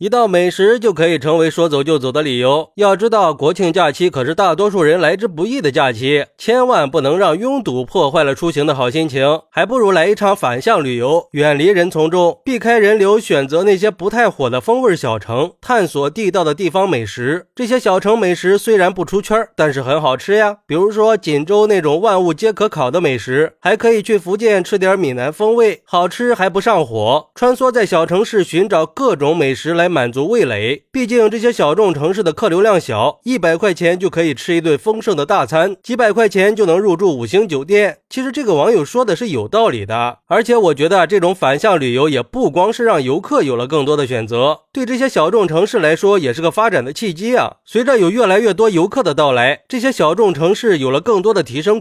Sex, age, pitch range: male, 20-39, 155-225 Hz